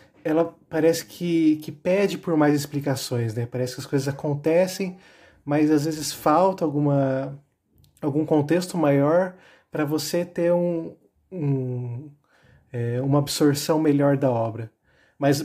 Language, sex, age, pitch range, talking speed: Portuguese, male, 20-39, 130-170 Hz, 115 wpm